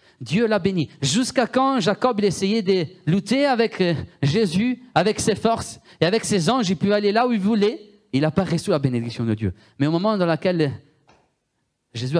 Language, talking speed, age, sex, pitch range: French, 195 wpm, 30-49, male, 120-160 Hz